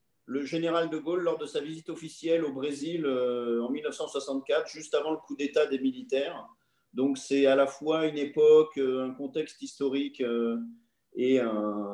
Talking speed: 175 wpm